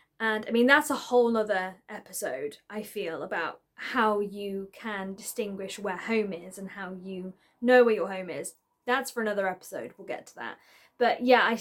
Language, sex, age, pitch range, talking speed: English, female, 20-39, 205-255 Hz, 190 wpm